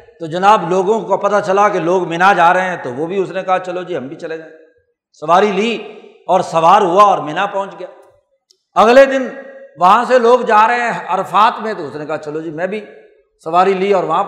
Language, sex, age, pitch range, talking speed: Urdu, male, 60-79, 190-270 Hz, 230 wpm